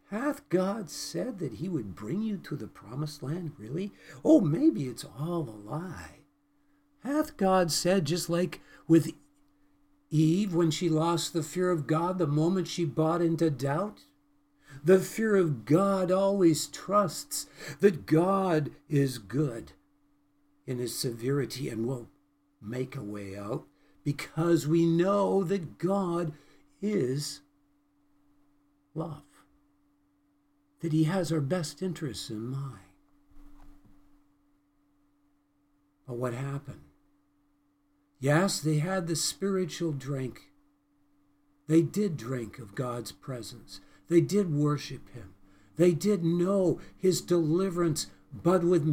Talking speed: 120 wpm